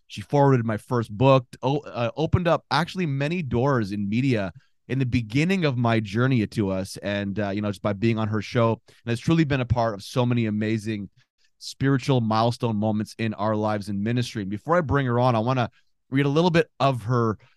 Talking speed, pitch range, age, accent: 210 wpm, 105-130 Hz, 30-49, American